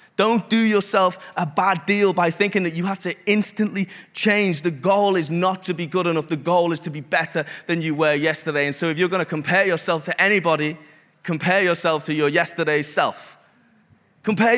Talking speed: 200 wpm